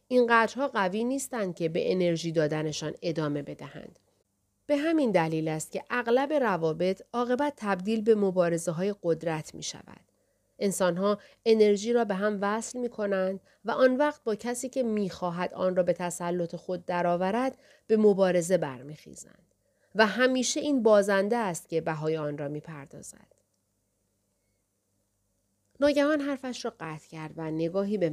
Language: Persian